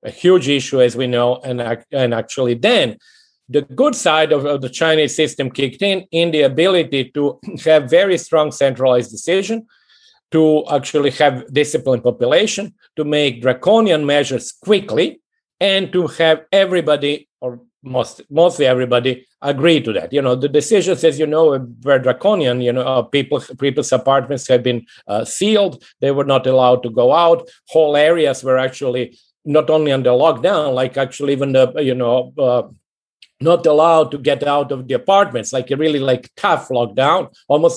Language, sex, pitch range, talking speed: English, male, 130-175 Hz, 165 wpm